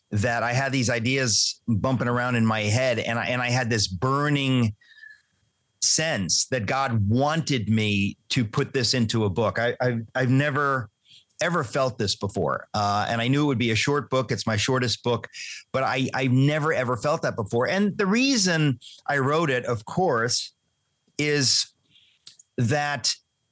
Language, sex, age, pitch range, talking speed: English, male, 40-59, 115-150 Hz, 175 wpm